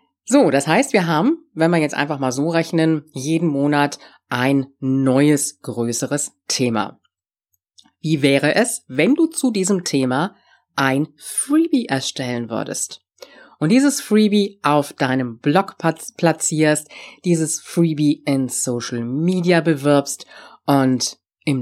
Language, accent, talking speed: German, German, 125 wpm